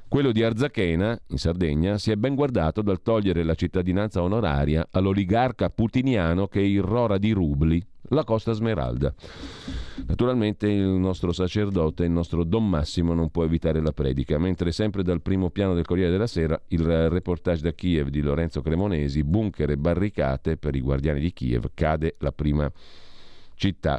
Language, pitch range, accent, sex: Italian, 80-95 Hz, native, male